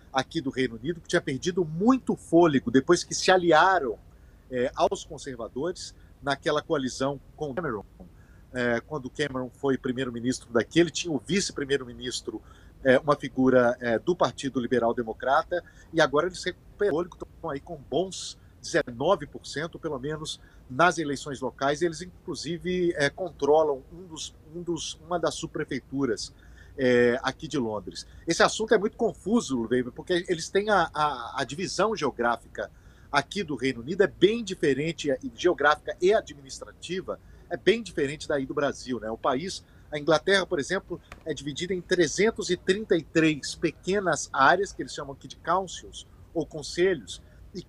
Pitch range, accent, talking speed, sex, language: 130-180 Hz, Brazilian, 150 wpm, male, Portuguese